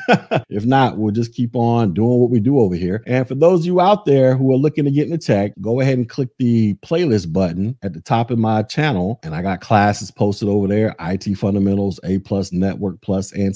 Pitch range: 100-130 Hz